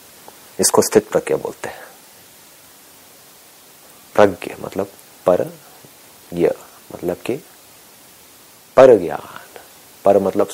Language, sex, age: Hindi, male, 40-59